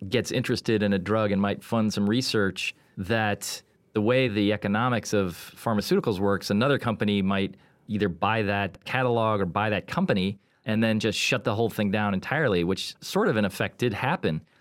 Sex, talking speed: male, 185 wpm